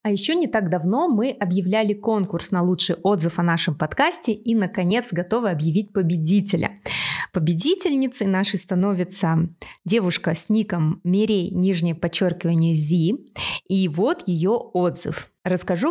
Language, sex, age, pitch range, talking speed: Russian, female, 20-39, 175-225 Hz, 130 wpm